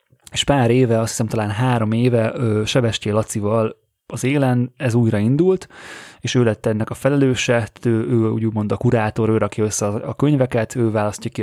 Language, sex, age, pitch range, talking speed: Hungarian, male, 20-39, 110-125 Hz, 180 wpm